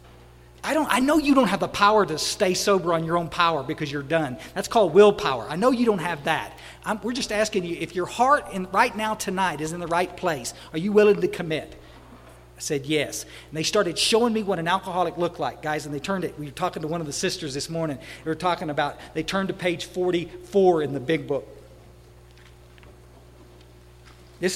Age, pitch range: 40-59, 140-190 Hz